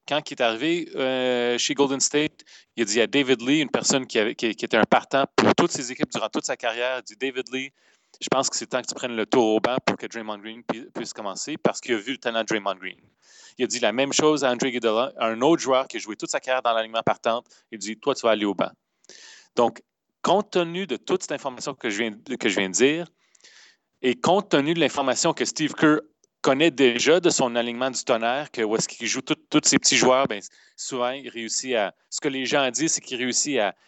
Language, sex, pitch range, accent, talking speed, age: French, male, 120-155 Hz, Canadian, 260 wpm, 30-49